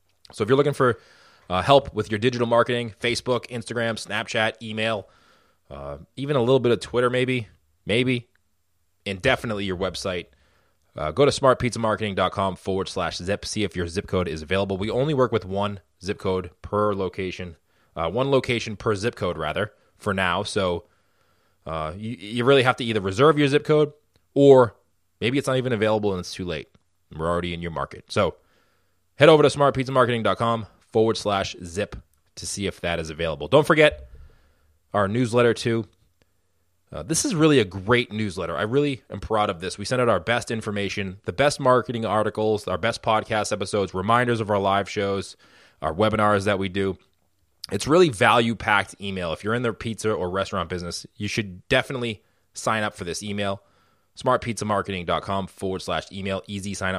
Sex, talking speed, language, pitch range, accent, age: male, 180 wpm, English, 95-120 Hz, American, 20-39